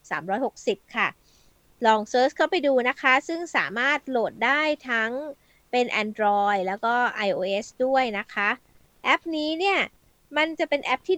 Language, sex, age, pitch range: Thai, female, 20-39, 215-290 Hz